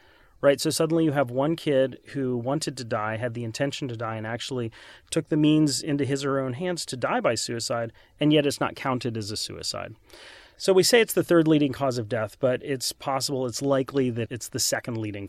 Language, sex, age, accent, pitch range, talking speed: English, male, 30-49, American, 115-150 Hz, 230 wpm